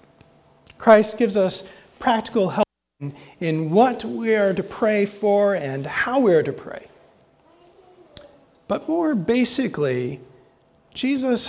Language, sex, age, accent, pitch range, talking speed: English, male, 40-59, American, 180-230 Hz, 120 wpm